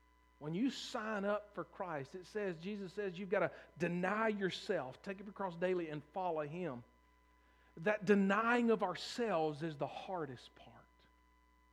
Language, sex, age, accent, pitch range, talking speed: English, male, 40-59, American, 130-195 Hz, 160 wpm